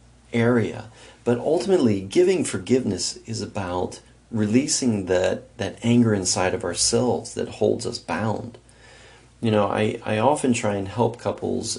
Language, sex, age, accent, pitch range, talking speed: English, male, 40-59, American, 95-120 Hz, 135 wpm